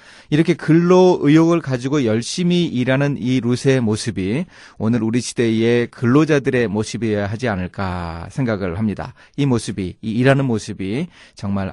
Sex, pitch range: male, 105-145 Hz